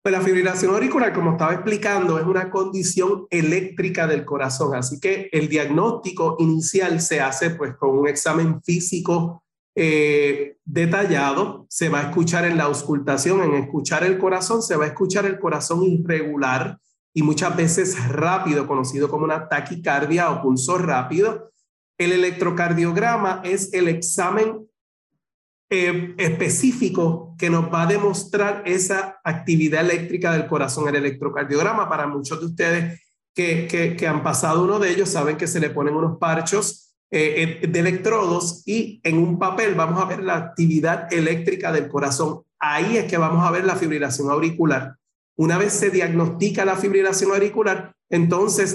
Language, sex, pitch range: Spanish, male, 155-190 Hz